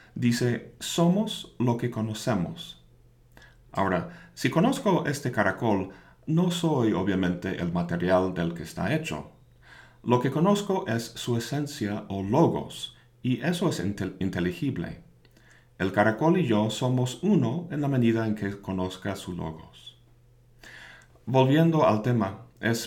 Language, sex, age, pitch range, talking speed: Spanish, male, 50-69, 100-135 Hz, 130 wpm